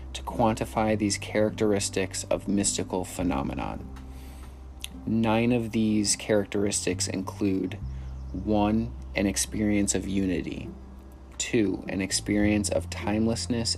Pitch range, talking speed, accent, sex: 70-105 Hz, 95 wpm, American, male